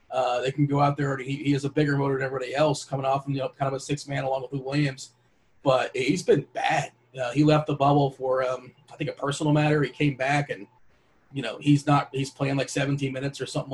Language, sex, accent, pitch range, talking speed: English, male, American, 135-150 Hz, 265 wpm